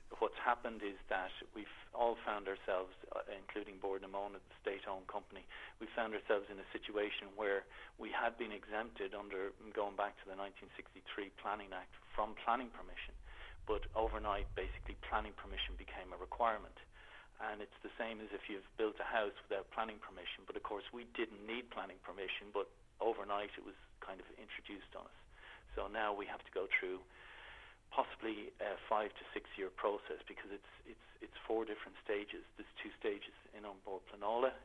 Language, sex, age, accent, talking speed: English, male, 50-69, Irish, 175 wpm